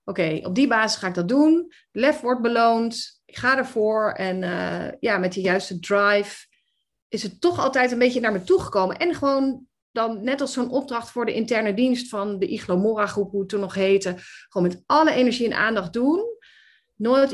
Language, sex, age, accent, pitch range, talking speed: Dutch, female, 30-49, Dutch, 210-270 Hz, 200 wpm